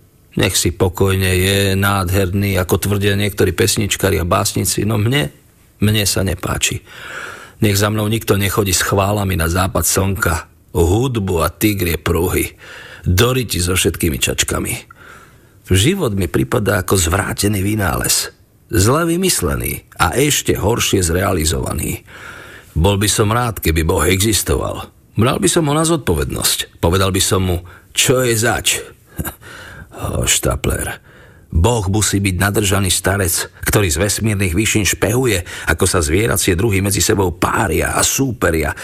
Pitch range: 90-110 Hz